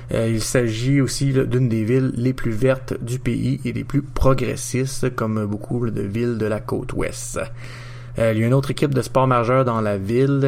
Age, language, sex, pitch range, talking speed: 30-49, French, male, 110-130 Hz, 200 wpm